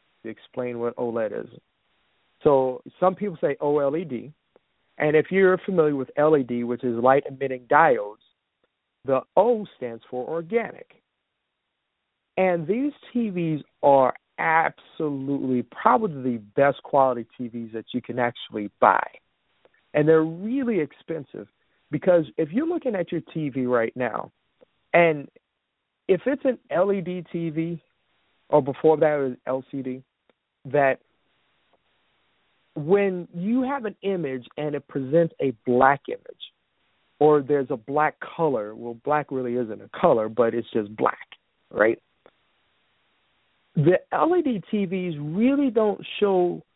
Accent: American